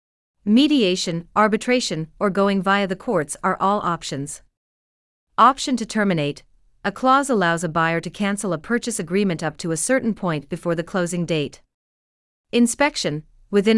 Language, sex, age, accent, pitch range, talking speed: English, female, 40-59, American, 160-210 Hz, 150 wpm